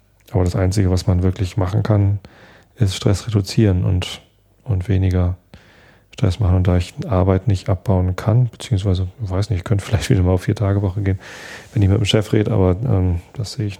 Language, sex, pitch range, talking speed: German, male, 95-105 Hz, 210 wpm